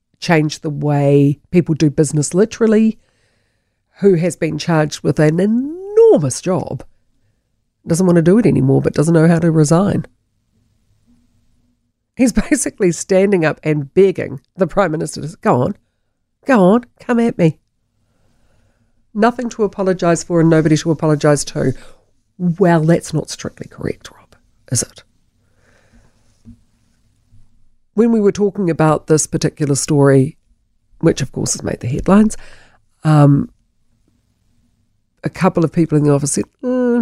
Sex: female